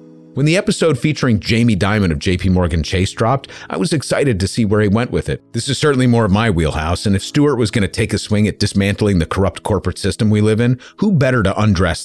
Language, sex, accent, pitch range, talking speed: English, male, American, 95-130 Hz, 250 wpm